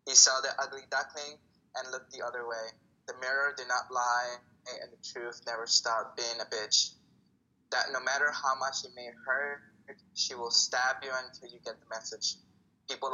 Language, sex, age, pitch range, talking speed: English, male, 20-39, 125-140 Hz, 185 wpm